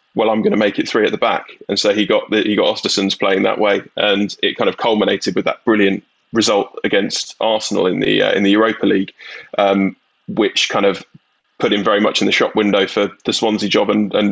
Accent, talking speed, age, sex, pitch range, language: British, 240 wpm, 20-39, male, 105-125 Hz, English